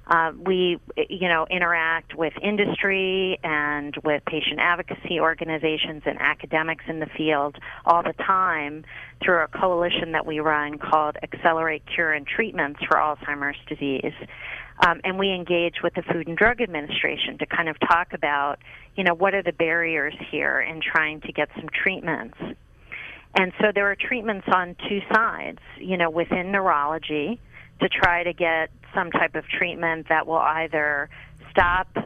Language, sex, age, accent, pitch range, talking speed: English, female, 40-59, American, 155-180 Hz, 160 wpm